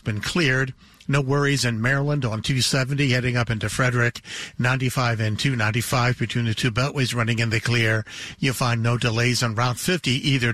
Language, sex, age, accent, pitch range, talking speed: English, male, 60-79, American, 120-140 Hz, 175 wpm